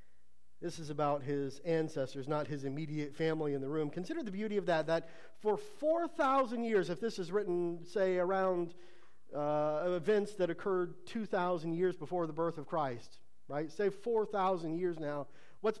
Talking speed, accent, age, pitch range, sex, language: 165 wpm, American, 40-59, 180-230 Hz, male, English